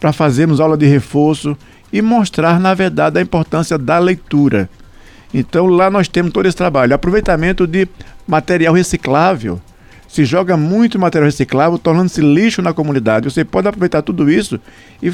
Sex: male